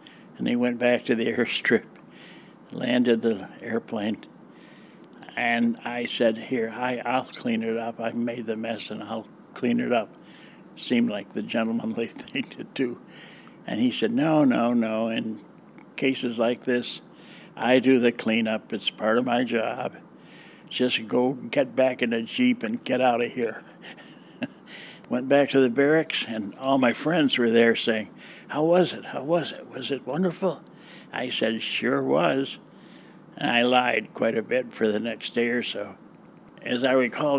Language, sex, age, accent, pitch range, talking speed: English, male, 60-79, American, 115-130 Hz, 170 wpm